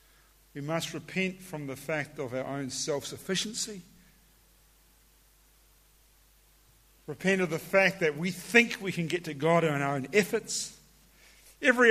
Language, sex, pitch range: English, male, 165-210 Hz